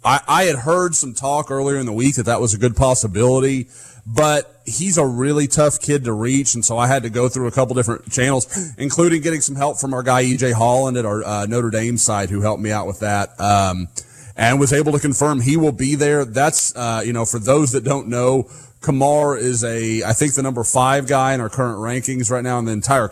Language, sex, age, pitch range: English, male, 30-49, 110-135 Hz